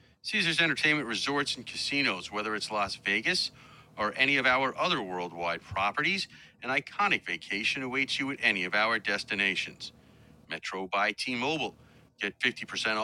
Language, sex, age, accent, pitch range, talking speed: English, male, 40-59, American, 95-130 Hz, 145 wpm